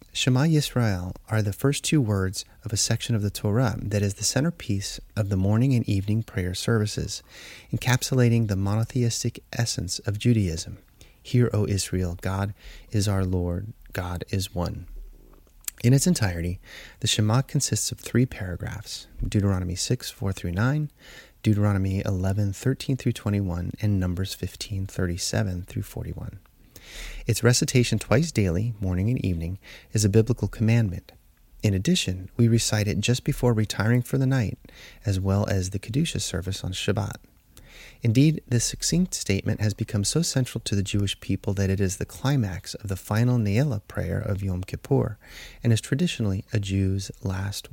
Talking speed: 160 wpm